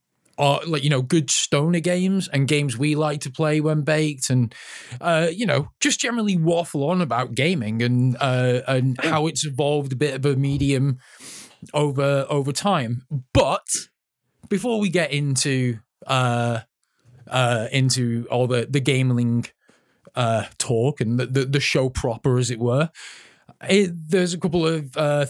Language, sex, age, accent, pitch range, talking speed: English, male, 20-39, British, 125-150 Hz, 160 wpm